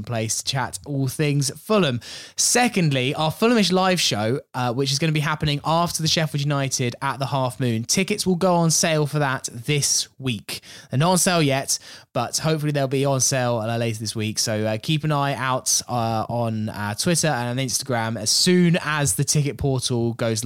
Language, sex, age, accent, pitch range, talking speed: English, male, 20-39, British, 105-145 Hz, 200 wpm